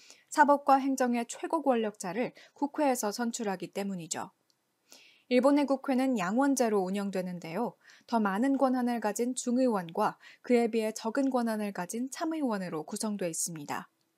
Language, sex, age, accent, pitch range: Korean, female, 20-39, native, 205-270 Hz